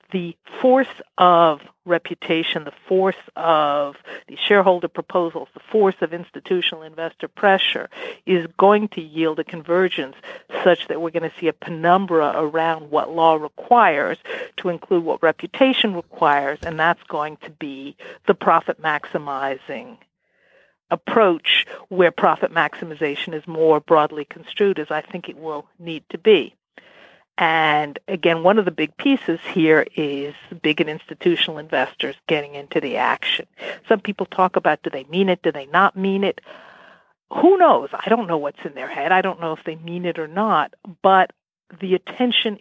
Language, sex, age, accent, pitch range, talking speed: English, female, 60-79, American, 160-195 Hz, 160 wpm